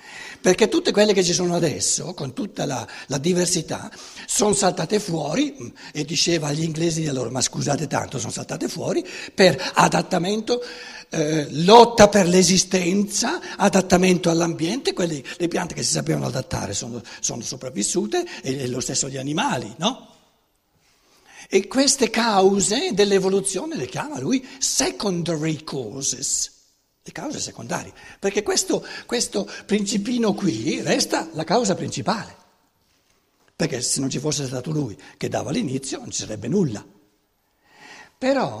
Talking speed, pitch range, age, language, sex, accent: 135 wpm, 155-230 Hz, 60-79, Italian, male, native